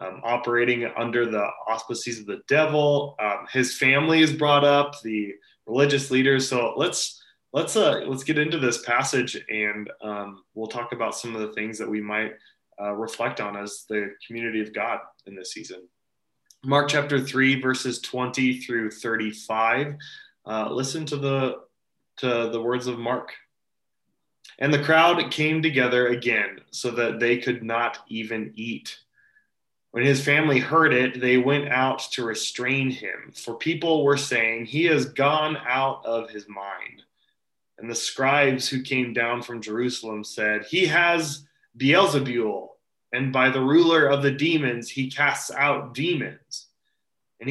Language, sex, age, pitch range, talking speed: English, male, 20-39, 115-145 Hz, 155 wpm